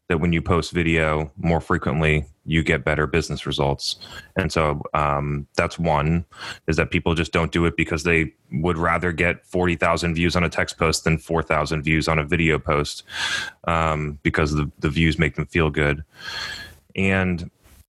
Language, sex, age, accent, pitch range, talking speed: English, male, 20-39, American, 80-90 Hz, 175 wpm